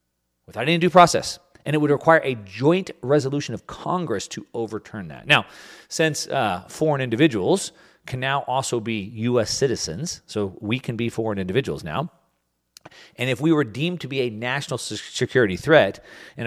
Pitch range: 110-145 Hz